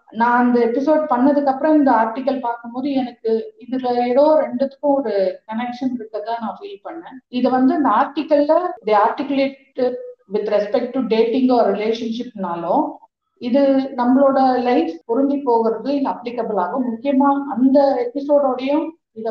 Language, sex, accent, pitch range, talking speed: Tamil, female, native, 205-270 Hz, 85 wpm